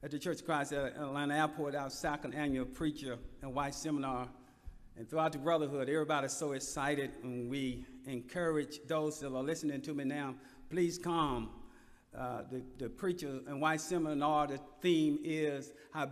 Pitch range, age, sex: 145-205 Hz, 50-69, male